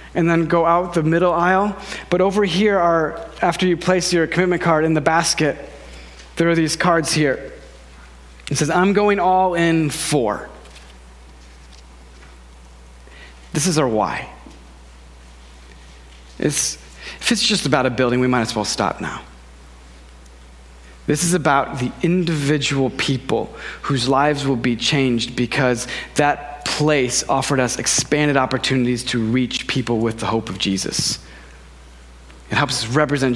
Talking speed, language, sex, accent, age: 140 wpm, English, male, American, 40-59